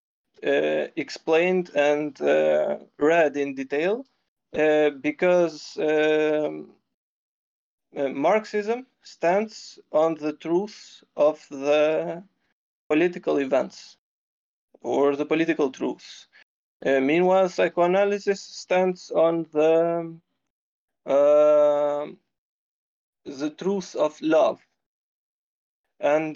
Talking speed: 80 wpm